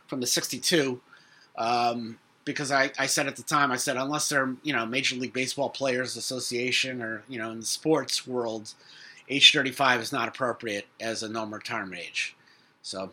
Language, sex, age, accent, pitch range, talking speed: English, male, 30-49, American, 110-145 Hz, 185 wpm